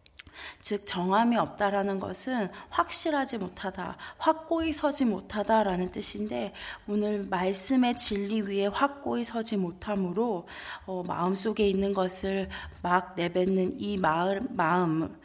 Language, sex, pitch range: Korean, female, 185-220 Hz